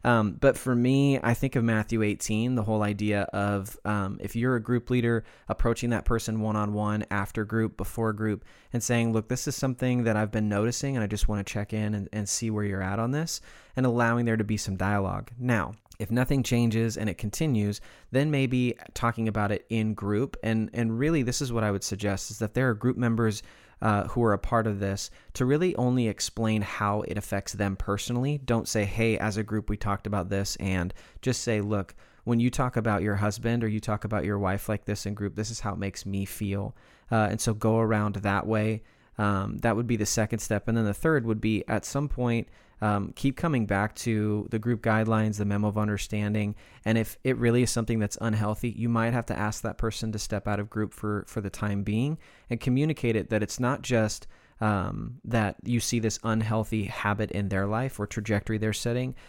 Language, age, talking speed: English, 20-39, 225 wpm